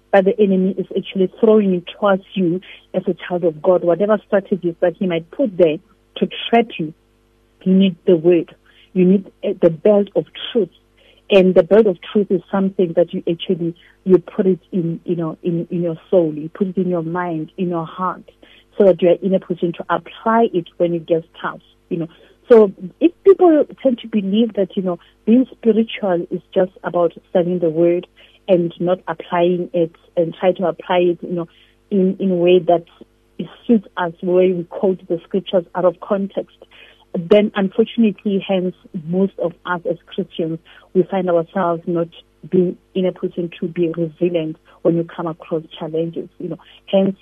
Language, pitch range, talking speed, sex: English, 170-195 Hz, 190 wpm, female